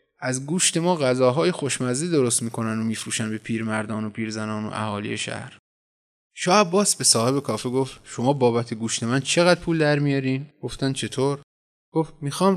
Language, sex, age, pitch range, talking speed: Persian, male, 20-39, 115-165 Hz, 160 wpm